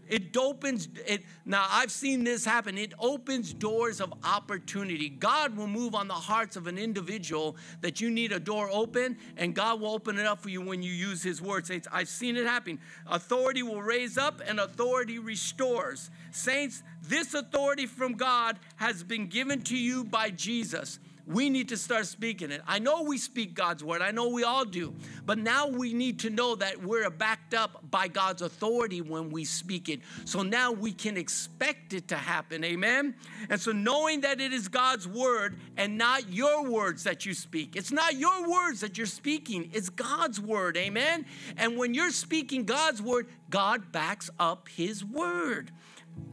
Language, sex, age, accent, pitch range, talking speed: English, male, 50-69, American, 180-250 Hz, 190 wpm